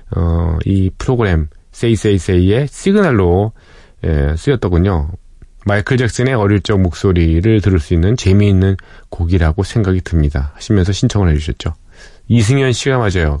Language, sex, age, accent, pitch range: Korean, male, 40-59, native, 85-115 Hz